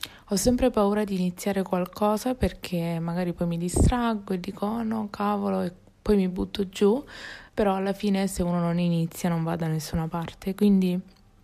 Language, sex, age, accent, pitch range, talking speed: Italian, female, 20-39, native, 170-205 Hz, 175 wpm